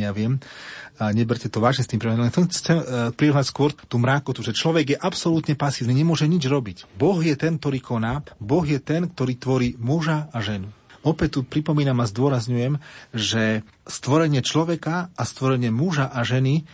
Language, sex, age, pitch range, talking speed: Slovak, male, 30-49, 115-145 Hz, 185 wpm